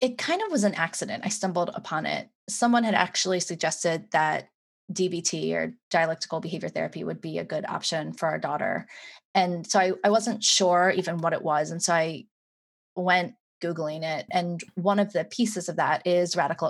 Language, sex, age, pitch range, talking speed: English, female, 20-39, 170-205 Hz, 190 wpm